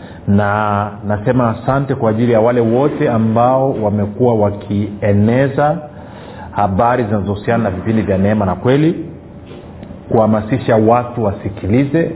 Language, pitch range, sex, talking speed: Swahili, 105-130 Hz, male, 110 wpm